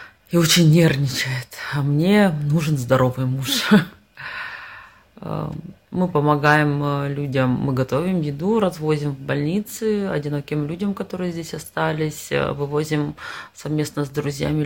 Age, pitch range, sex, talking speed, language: 30-49, 145-175 Hz, female, 105 wpm, Polish